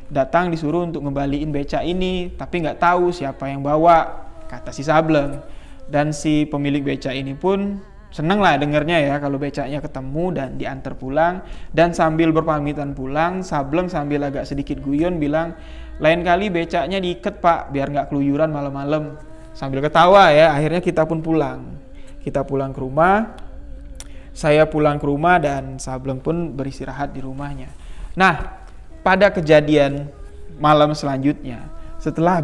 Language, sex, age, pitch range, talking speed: Indonesian, male, 20-39, 135-170 Hz, 140 wpm